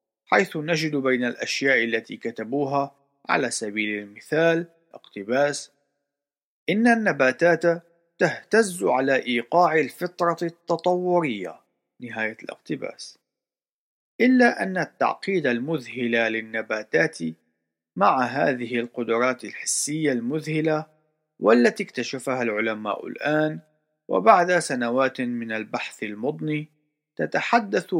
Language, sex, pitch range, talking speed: Arabic, male, 120-160 Hz, 85 wpm